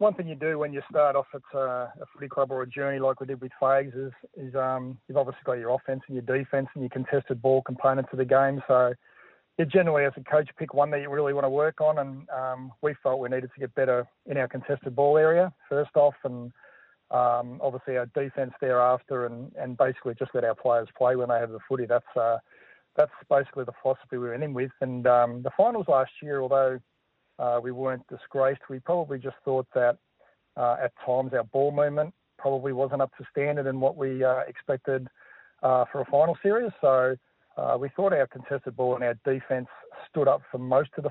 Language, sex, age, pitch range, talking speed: English, male, 40-59, 125-140 Hz, 220 wpm